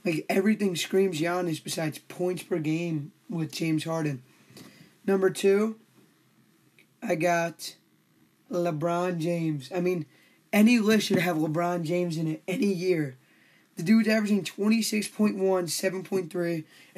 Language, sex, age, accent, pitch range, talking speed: English, male, 20-39, American, 165-195 Hz, 120 wpm